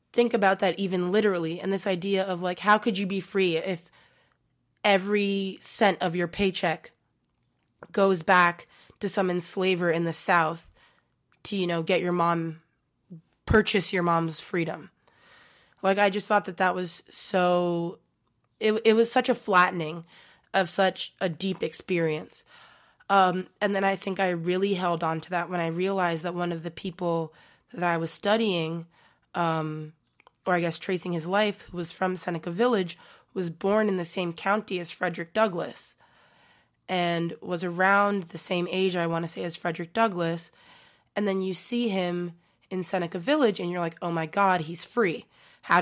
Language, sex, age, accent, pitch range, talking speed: English, female, 20-39, American, 170-200 Hz, 175 wpm